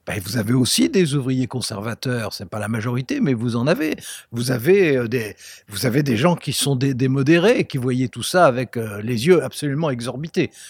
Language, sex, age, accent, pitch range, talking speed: French, male, 60-79, French, 120-165 Hz, 220 wpm